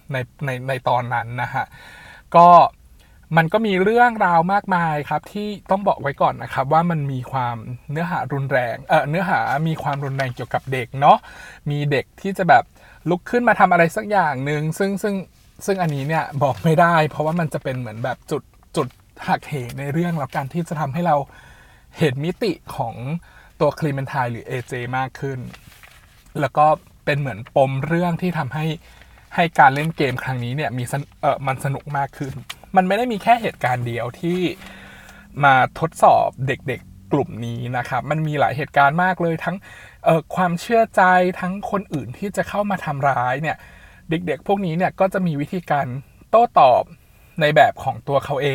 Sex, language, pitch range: male, Thai, 130-175 Hz